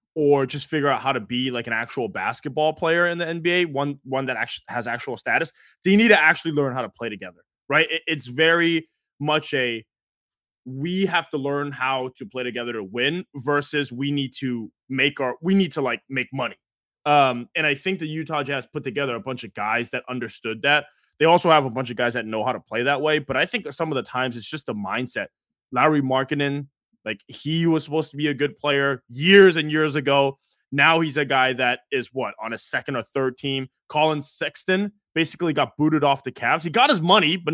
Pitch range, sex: 130-160 Hz, male